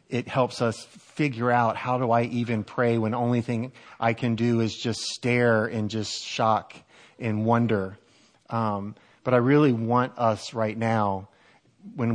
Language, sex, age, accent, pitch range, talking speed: English, male, 30-49, American, 105-120 Hz, 170 wpm